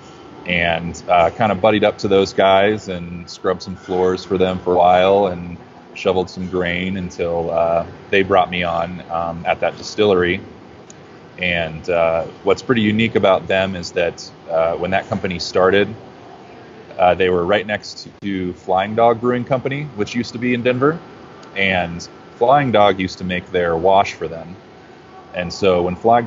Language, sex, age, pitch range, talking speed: English, male, 20-39, 85-100 Hz, 175 wpm